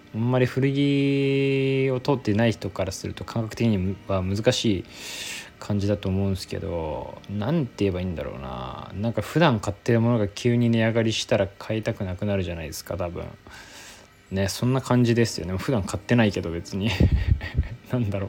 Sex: male